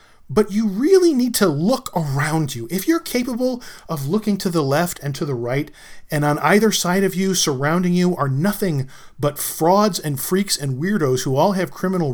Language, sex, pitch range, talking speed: English, male, 135-195 Hz, 200 wpm